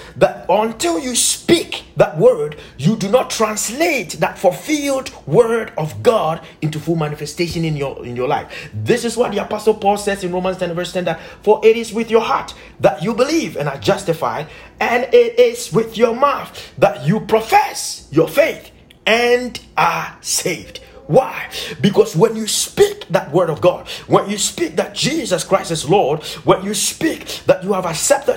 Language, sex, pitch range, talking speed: English, male, 180-250 Hz, 180 wpm